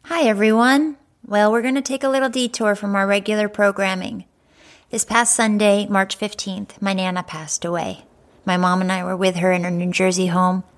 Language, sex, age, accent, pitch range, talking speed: English, female, 30-49, American, 175-195 Hz, 195 wpm